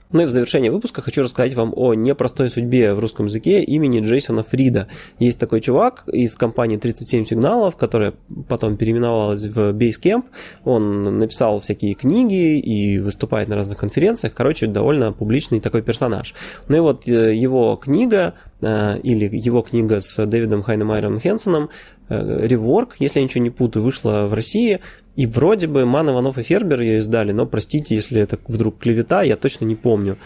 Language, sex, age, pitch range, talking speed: Russian, male, 20-39, 110-140 Hz, 165 wpm